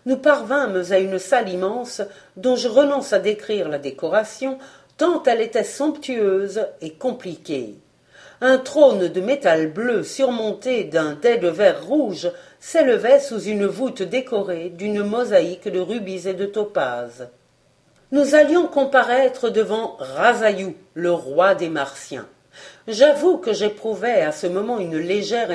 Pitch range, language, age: 180-255 Hz, French, 50-69